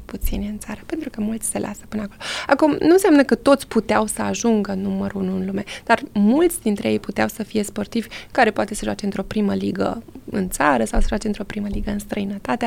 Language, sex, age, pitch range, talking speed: Romanian, female, 20-39, 210-270 Hz, 225 wpm